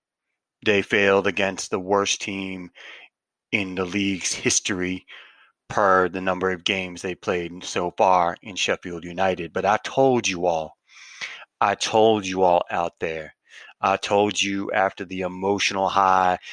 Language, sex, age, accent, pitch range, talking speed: English, male, 30-49, American, 95-105 Hz, 145 wpm